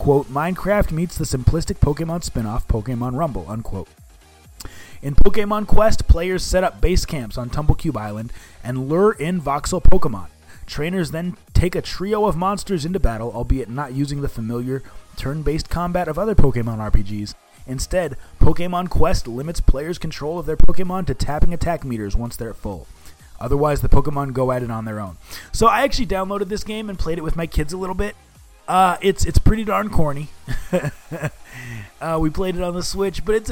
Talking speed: 185 wpm